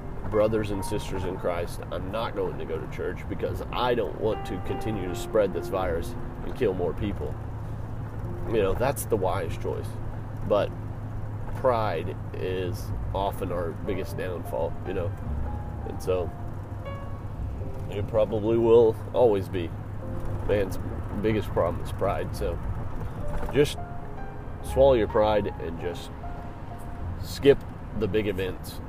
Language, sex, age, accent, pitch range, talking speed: English, male, 30-49, American, 100-115 Hz, 135 wpm